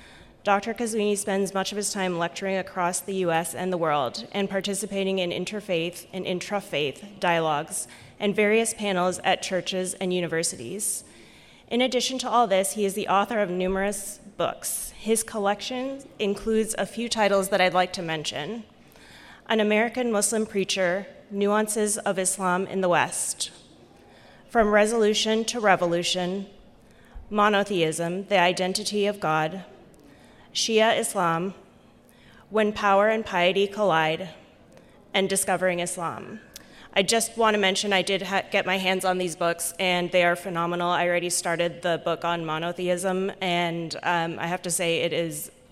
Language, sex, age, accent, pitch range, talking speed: English, female, 30-49, American, 175-205 Hz, 150 wpm